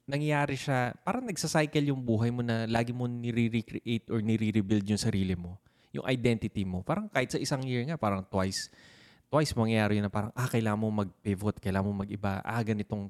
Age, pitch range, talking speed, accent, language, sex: 20-39, 100-130 Hz, 185 wpm, native, Filipino, male